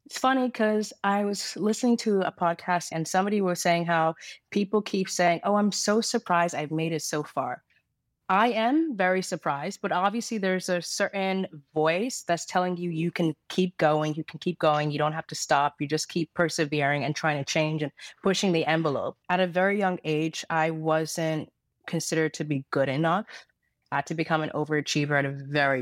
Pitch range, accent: 150-185 Hz, American